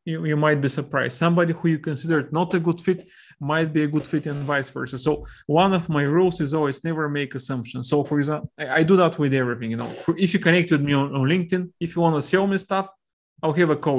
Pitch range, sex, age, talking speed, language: 140-170 Hz, male, 20-39, 265 wpm, Hebrew